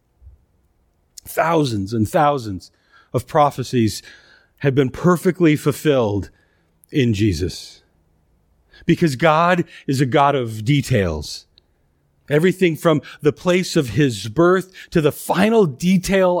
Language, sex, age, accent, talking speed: English, male, 40-59, American, 105 wpm